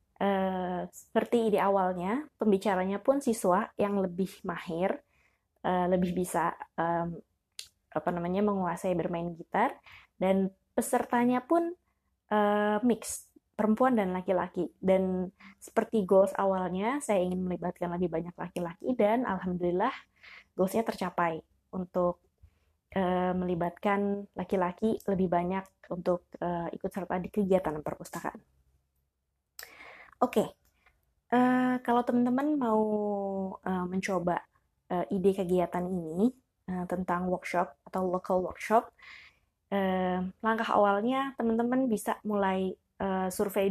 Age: 20-39